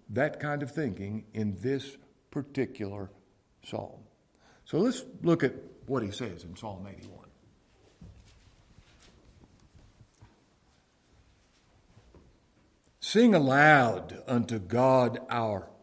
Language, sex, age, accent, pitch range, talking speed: English, male, 60-79, American, 110-150 Hz, 85 wpm